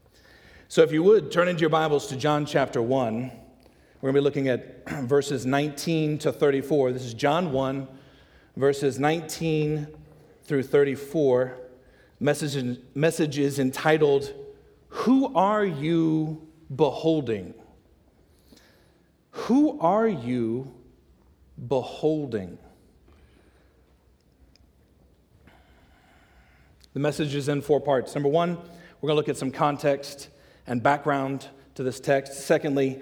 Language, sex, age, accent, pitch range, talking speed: English, male, 40-59, American, 125-155 Hz, 115 wpm